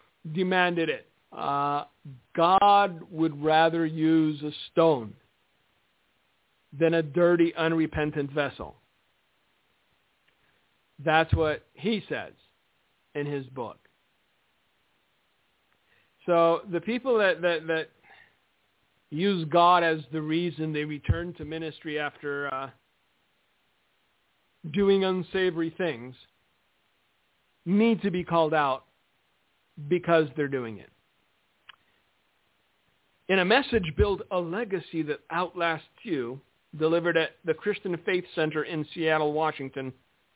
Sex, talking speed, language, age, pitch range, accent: male, 100 wpm, English, 50-69, 155-190 Hz, American